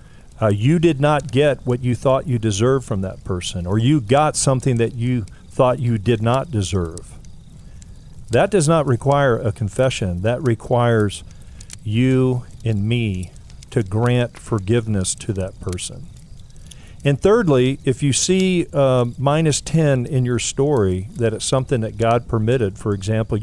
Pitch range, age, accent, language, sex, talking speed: 110-135 Hz, 50-69, American, English, male, 155 wpm